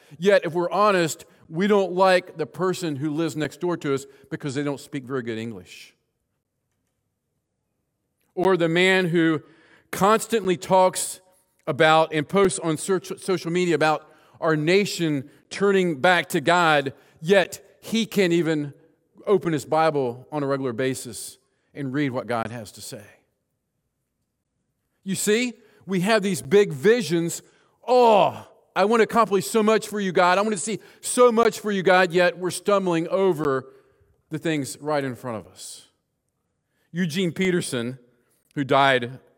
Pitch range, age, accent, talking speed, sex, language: 135-185 Hz, 40-59, American, 150 wpm, male, English